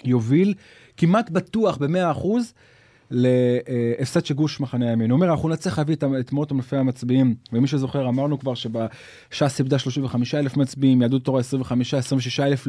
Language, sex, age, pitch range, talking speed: Hebrew, male, 30-49, 130-190 Hz, 135 wpm